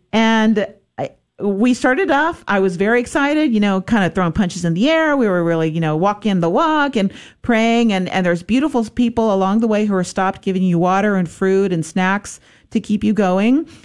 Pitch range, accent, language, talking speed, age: 185-235 Hz, American, English, 215 wpm, 40-59